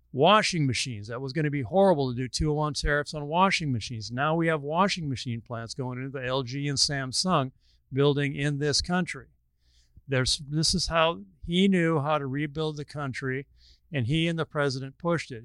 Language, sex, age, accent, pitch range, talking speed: English, male, 50-69, American, 130-155 Hz, 190 wpm